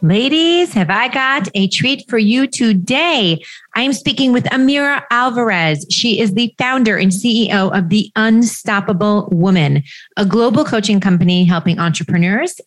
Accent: American